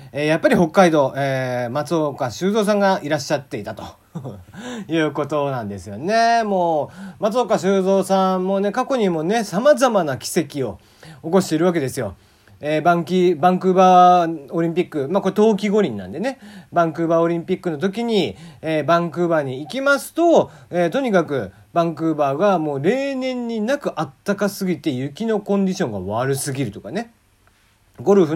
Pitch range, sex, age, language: 140-205 Hz, male, 40-59, Japanese